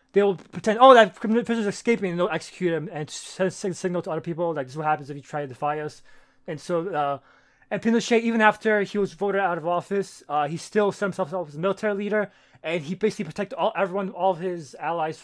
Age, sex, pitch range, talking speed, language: 20-39, male, 155-195 Hz, 245 wpm, English